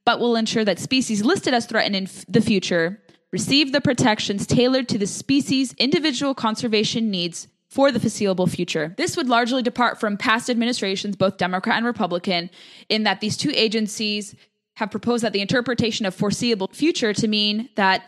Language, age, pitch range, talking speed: English, 20-39, 195-240 Hz, 170 wpm